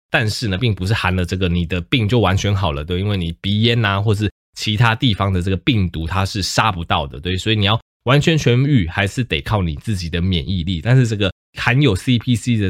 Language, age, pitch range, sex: Chinese, 20-39, 85-110 Hz, male